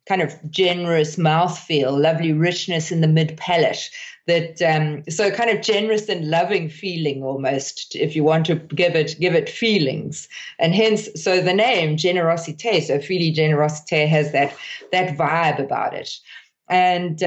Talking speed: 155 wpm